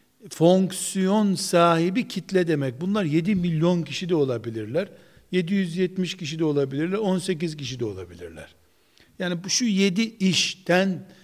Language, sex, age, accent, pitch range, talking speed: Turkish, male, 60-79, native, 155-200 Hz, 125 wpm